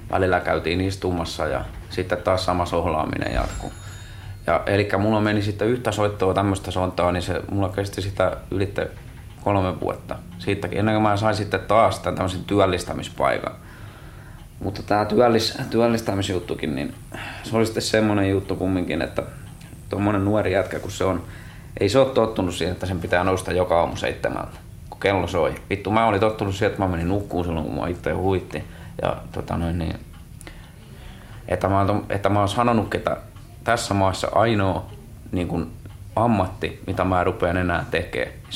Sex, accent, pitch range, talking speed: male, native, 90-105 Hz, 160 wpm